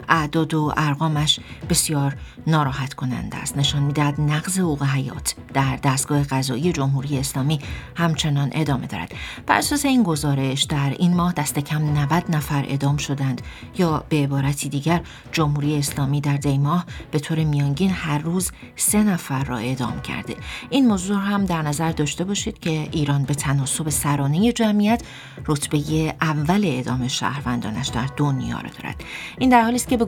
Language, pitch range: English, 140-180 Hz